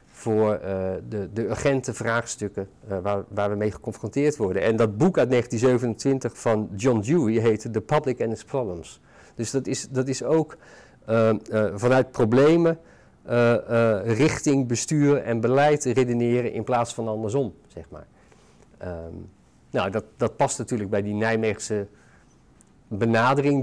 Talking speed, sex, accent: 145 wpm, male, Dutch